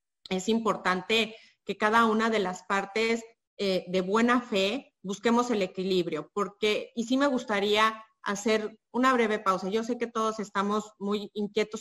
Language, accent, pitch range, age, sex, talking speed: Spanish, Mexican, 185-225 Hz, 30-49, female, 160 wpm